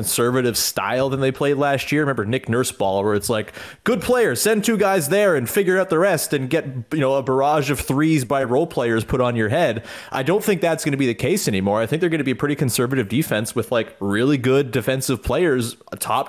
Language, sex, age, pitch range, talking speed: English, male, 30-49, 115-155 Hz, 245 wpm